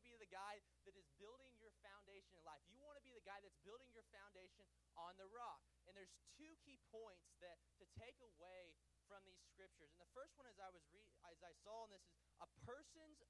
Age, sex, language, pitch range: 20-39, male, English, 185-235 Hz